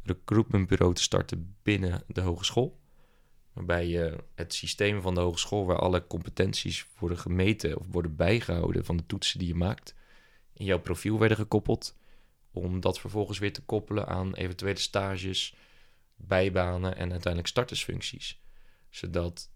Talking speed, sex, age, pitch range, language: 140 wpm, male, 20-39, 85-100 Hz, Dutch